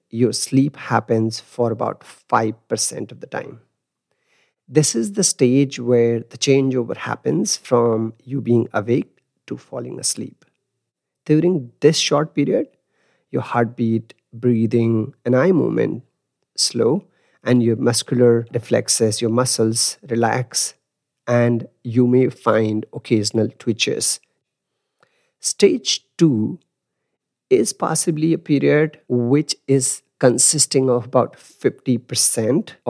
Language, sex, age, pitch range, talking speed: English, male, 50-69, 115-135 Hz, 110 wpm